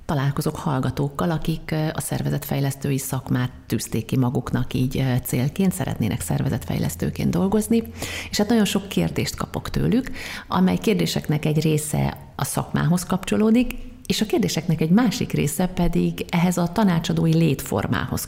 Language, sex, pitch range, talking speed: Hungarian, female, 135-195 Hz, 130 wpm